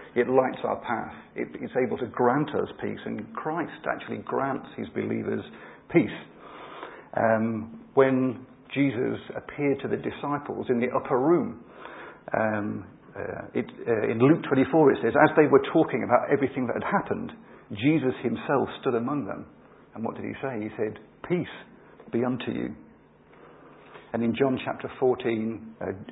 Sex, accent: male, British